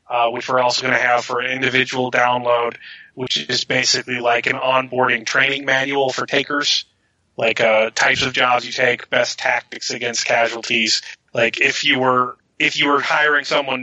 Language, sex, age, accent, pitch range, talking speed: English, male, 30-49, American, 120-140 Hz, 180 wpm